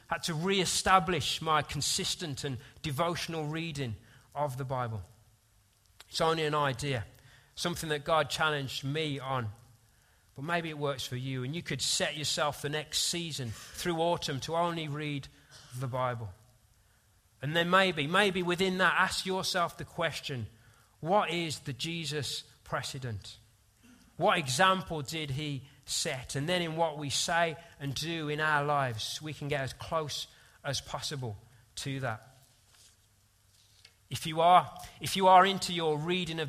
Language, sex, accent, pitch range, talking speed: English, male, British, 120-160 Hz, 150 wpm